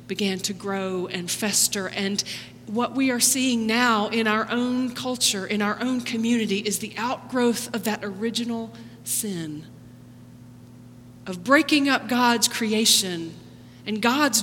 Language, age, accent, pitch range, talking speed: English, 40-59, American, 160-235 Hz, 135 wpm